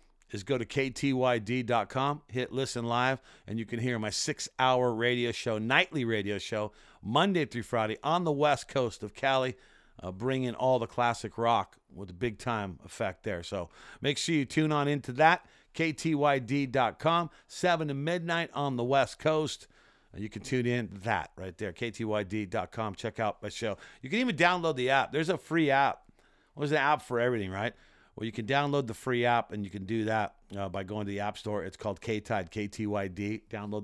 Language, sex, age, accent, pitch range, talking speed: English, male, 50-69, American, 105-140 Hz, 195 wpm